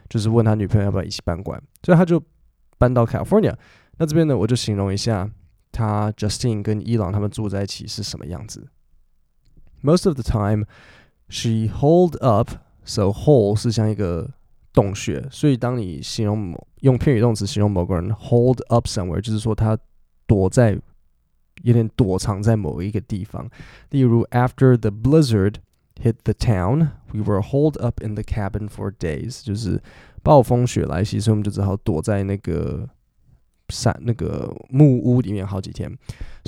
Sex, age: male, 20-39